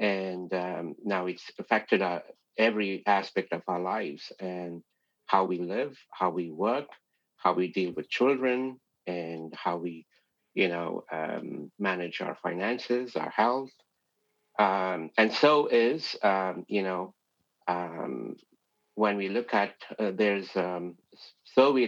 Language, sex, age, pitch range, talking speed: English, male, 50-69, 90-105 Hz, 135 wpm